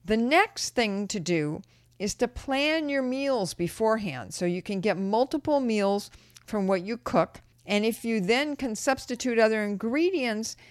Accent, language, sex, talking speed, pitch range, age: American, English, female, 165 wpm, 180-240 Hz, 50-69